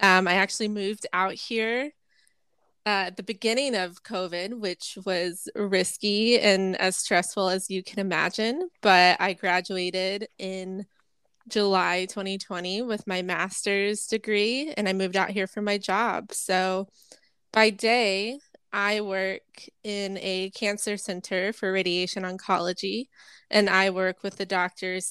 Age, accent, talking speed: 20-39, American, 135 wpm